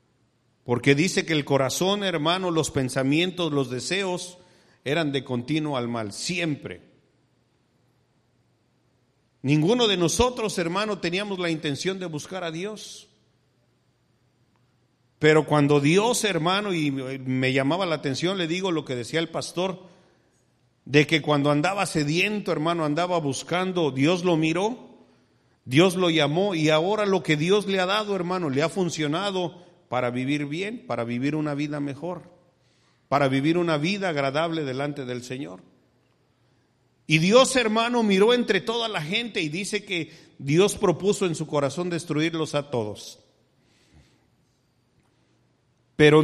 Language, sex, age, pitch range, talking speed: English, male, 50-69, 130-180 Hz, 135 wpm